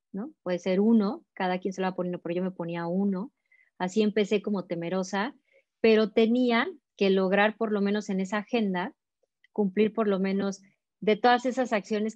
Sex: female